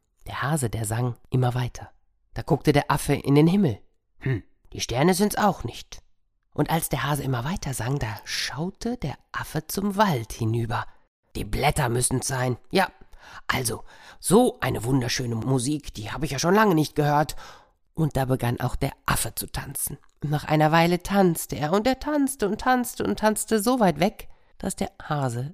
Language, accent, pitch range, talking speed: German, German, 130-200 Hz, 185 wpm